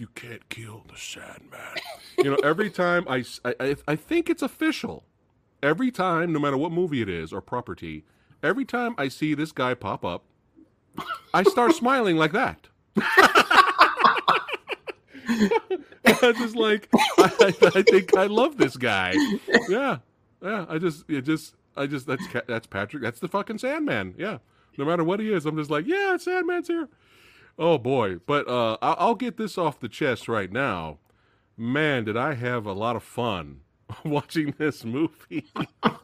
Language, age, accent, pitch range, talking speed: English, 40-59, American, 105-170 Hz, 165 wpm